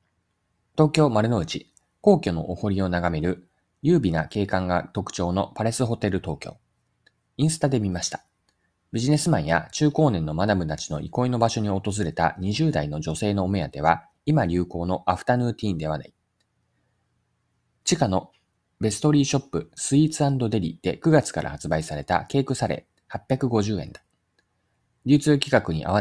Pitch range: 85-125 Hz